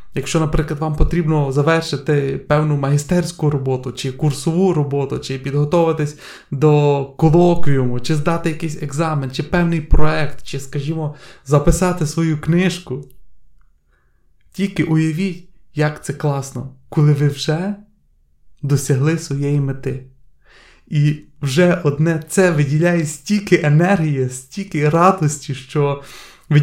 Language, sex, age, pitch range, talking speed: Ukrainian, male, 30-49, 140-165 Hz, 110 wpm